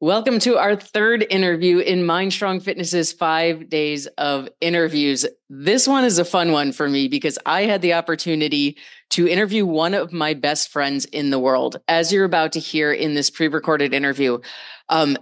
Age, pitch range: 30-49, 155-190 Hz